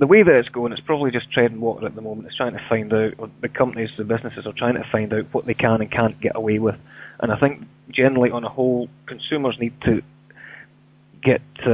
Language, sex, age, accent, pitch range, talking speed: English, male, 20-39, British, 110-130 Hz, 240 wpm